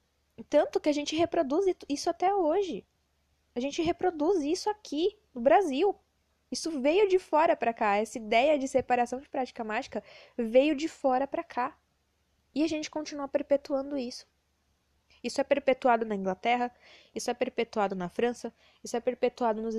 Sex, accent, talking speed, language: female, Brazilian, 160 wpm, Portuguese